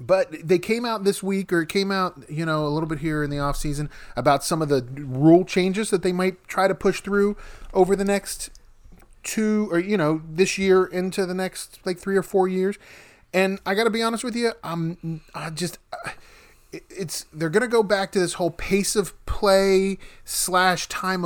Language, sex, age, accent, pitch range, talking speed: English, male, 30-49, American, 135-185 Hz, 205 wpm